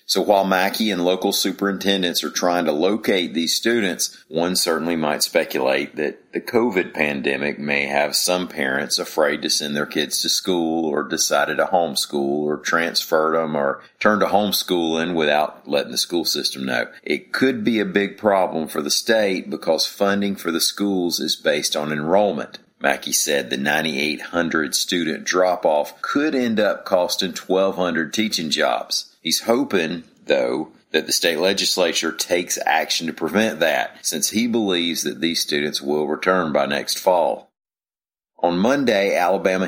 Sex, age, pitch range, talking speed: male, 40-59, 80-100 Hz, 160 wpm